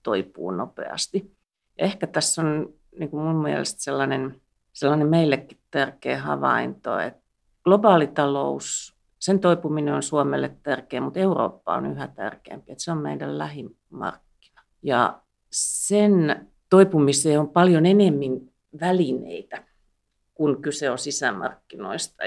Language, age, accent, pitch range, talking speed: Finnish, 40-59, native, 140-170 Hz, 115 wpm